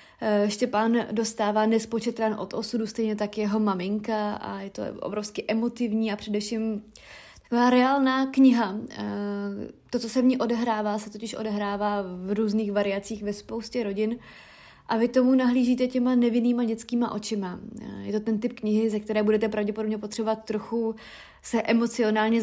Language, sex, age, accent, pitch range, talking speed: Czech, female, 30-49, native, 205-230 Hz, 145 wpm